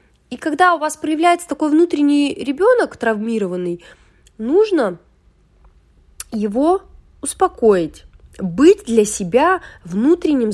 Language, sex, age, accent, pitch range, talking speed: Russian, female, 30-49, native, 180-280 Hz, 90 wpm